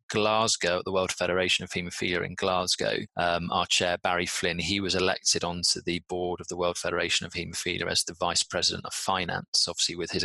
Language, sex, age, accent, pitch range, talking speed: English, male, 30-49, British, 85-95 Hz, 205 wpm